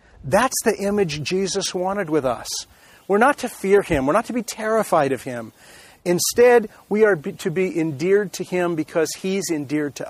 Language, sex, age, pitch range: English, male, 40-59, 160-210 Hz